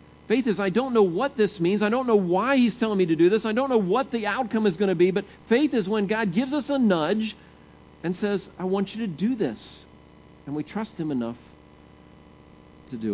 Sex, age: male, 50-69